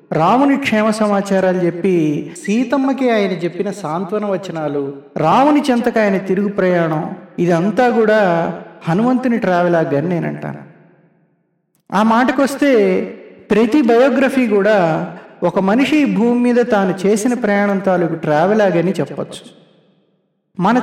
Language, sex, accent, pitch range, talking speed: Telugu, male, native, 170-230 Hz, 110 wpm